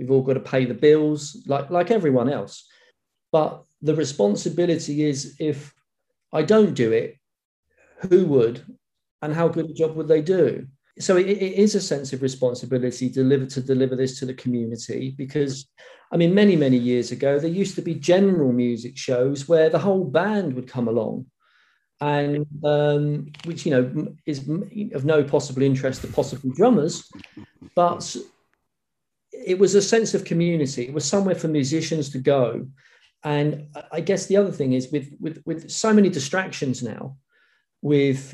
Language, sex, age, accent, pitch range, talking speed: English, male, 40-59, British, 135-165 Hz, 170 wpm